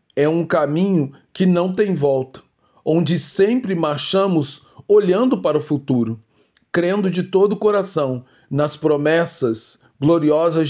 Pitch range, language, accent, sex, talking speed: 140-170 Hz, Portuguese, Brazilian, male, 125 wpm